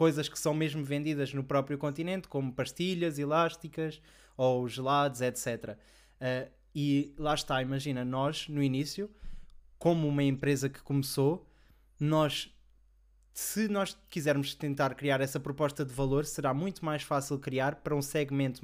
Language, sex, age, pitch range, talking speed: Portuguese, male, 20-39, 130-155 Hz, 140 wpm